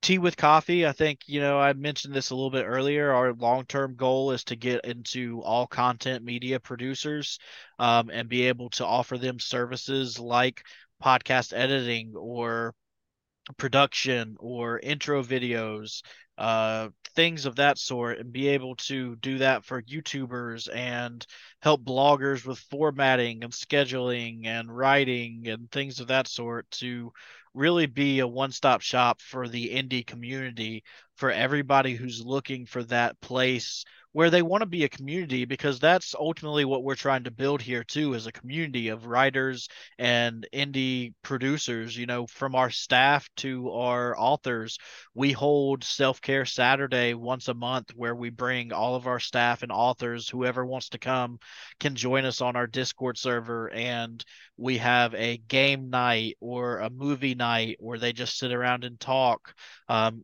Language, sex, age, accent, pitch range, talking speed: English, male, 20-39, American, 120-135 Hz, 165 wpm